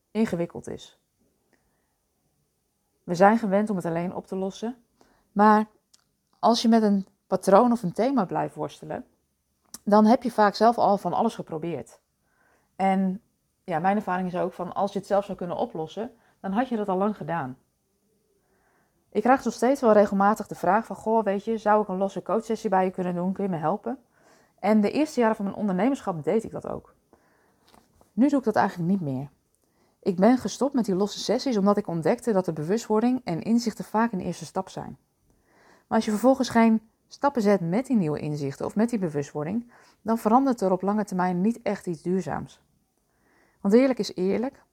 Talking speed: 195 wpm